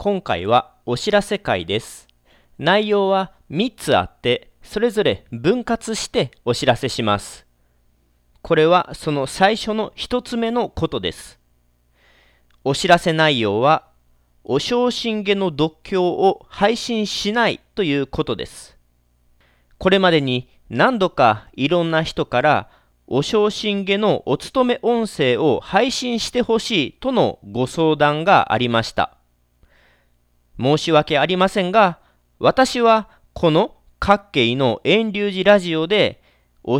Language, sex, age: Japanese, male, 40-59